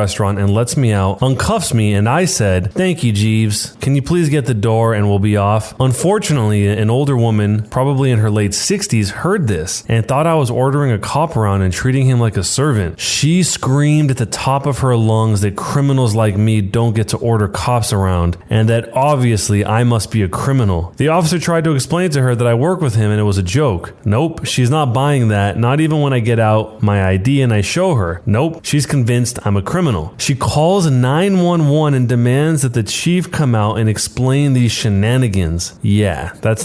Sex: male